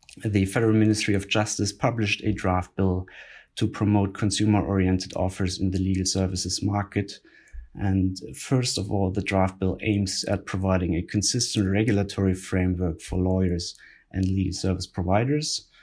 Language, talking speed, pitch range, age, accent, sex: English, 145 wpm, 90-105 Hz, 30-49, German, male